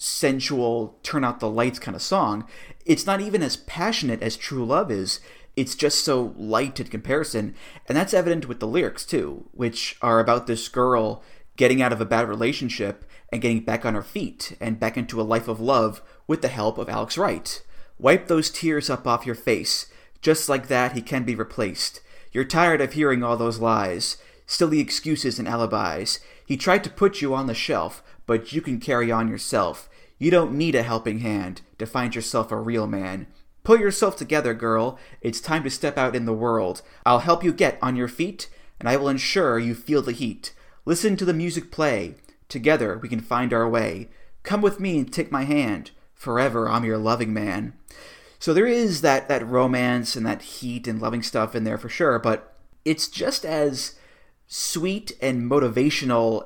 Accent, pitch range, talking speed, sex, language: American, 115-145 Hz, 195 wpm, male, English